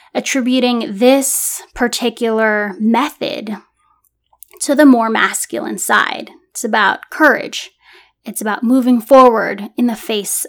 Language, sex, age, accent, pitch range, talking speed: English, female, 10-29, American, 230-275 Hz, 110 wpm